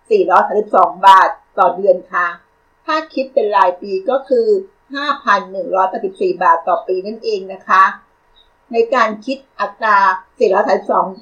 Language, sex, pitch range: Thai, female, 195-280 Hz